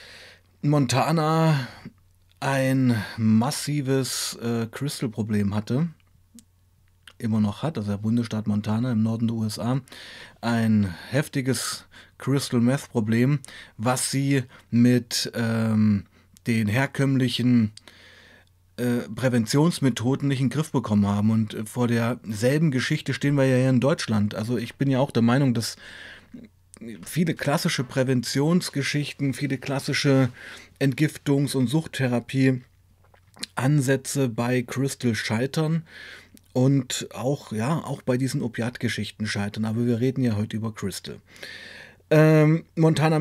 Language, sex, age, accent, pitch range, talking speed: German, male, 30-49, German, 110-135 Hz, 115 wpm